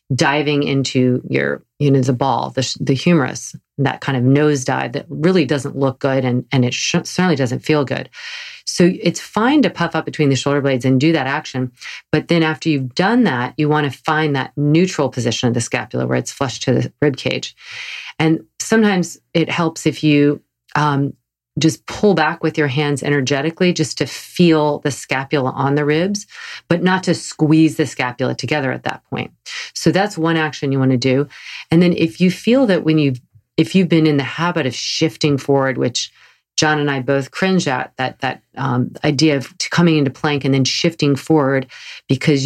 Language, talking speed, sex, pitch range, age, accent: English, 200 wpm, female, 135-165 Hz, 40-59, American